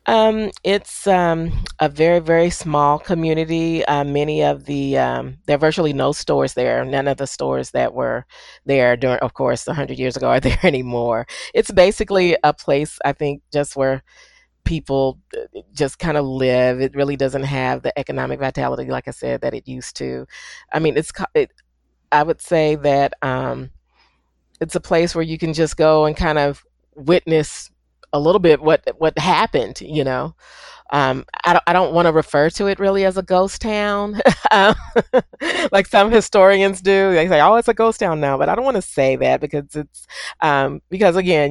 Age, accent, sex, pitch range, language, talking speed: 40-59, American, female, 140-185 Hz, English, 190 wpm